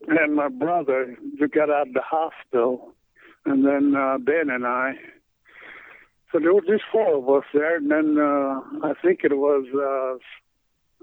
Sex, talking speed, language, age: male, 165 wpm, English, 60-79